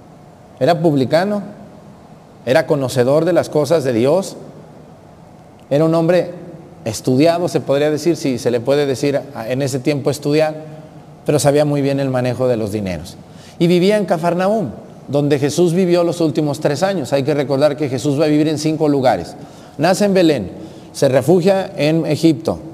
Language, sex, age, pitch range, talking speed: Spanish, male, 40-59, 140-175 Hz, 165 wpm